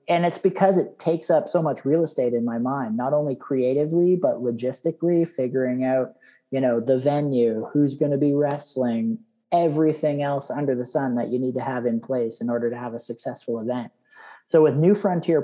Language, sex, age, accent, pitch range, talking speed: English, male, 30-49, American, 125-155 Hz, 200 wpm